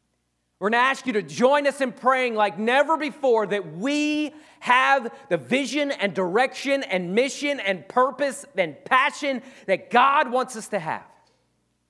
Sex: male